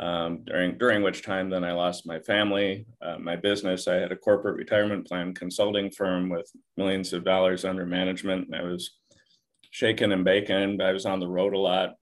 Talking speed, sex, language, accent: 205 wpm, male, English, American